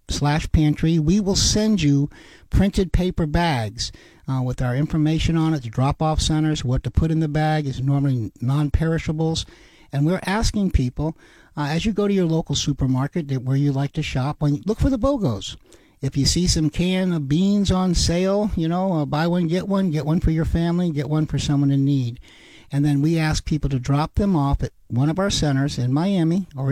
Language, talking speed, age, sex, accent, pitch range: English, 215 wpm, 60-79, male, American, 135-165 Hz